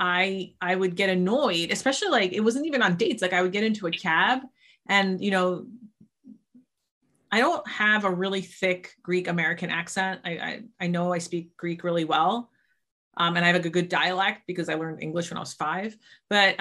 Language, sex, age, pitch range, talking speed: English, female, 30-49, 180-230 Hz, 205 wpm